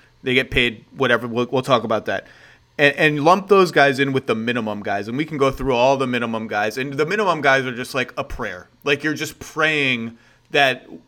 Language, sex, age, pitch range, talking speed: English, male, 30-49, 125-150 Hz, 225 wpm